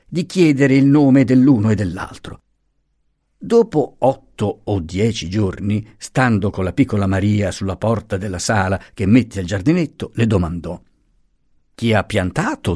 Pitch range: 95-130 Hz